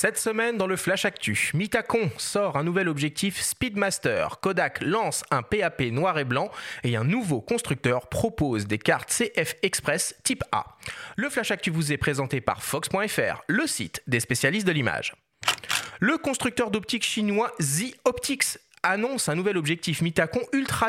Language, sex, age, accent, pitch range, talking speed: French, male, 30-49, French, 145-210 Hz, 160 wpm